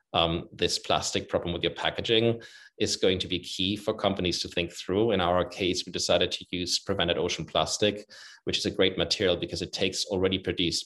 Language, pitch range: English, 90-105 Hz